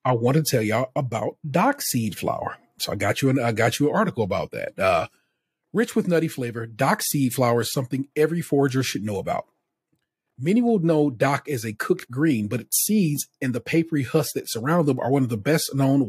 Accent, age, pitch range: American, 40-59, 125-165 Hz